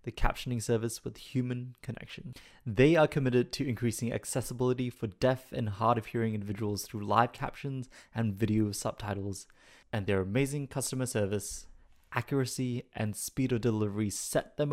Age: 20-39